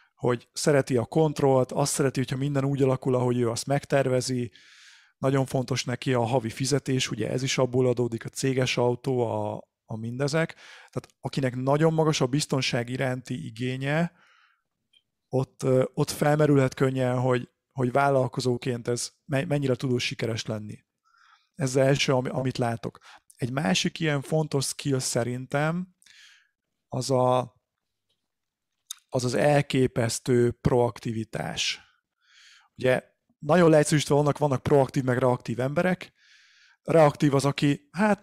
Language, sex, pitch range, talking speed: Hungarian, male, 125-145 Hz, 125 wpm